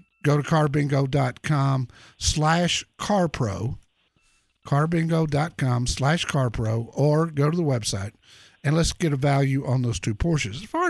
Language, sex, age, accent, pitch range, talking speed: English, male, 50-69, American, 125-155 Hz, 130 wpm